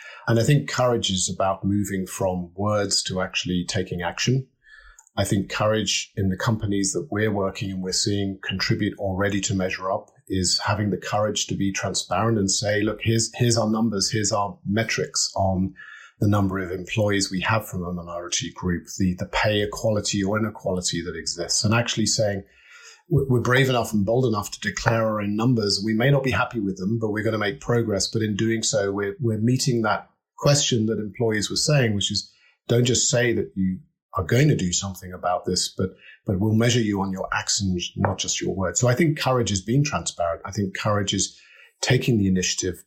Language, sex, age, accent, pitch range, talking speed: English, male, 40-59, British, 95-120 Hz, 205 wpm